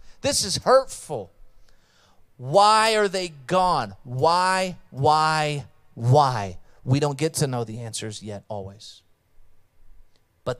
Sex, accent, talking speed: male, American, 115 wpm